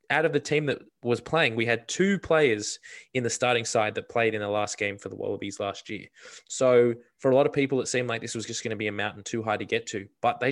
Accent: Australian